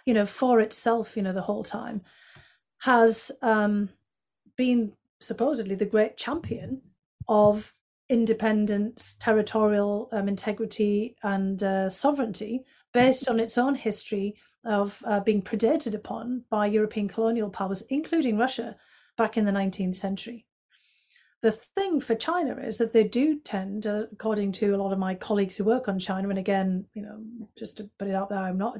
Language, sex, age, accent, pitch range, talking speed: English, female, 40-59, British, 200-235 Hz, 165 wpm